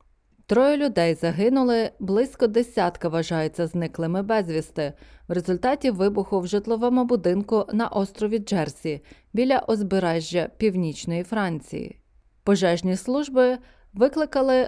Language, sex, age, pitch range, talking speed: Ukrainian, female, 20-39, 170-230 Hz, 100 wpm